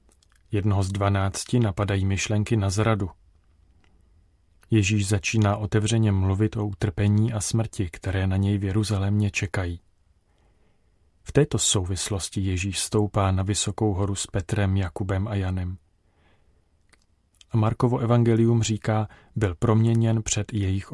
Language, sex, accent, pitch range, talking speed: Czech, male, native, 90-110 Hz, 120 wpm